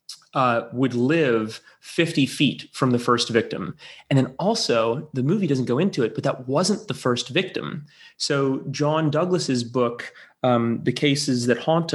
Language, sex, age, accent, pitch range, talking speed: English, male, 30-49, American, 125-160 Hz, 165 wpm